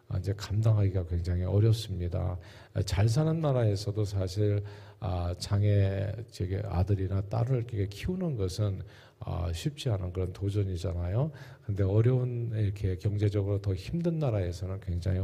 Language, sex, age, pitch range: Korean, male, 40-59, 100-120 Hz